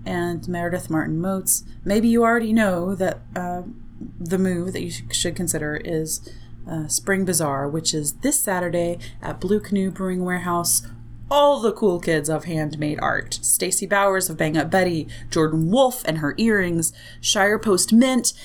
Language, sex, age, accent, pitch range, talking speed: English, female, 30-49, American, 160-205 Hz, 165 wpm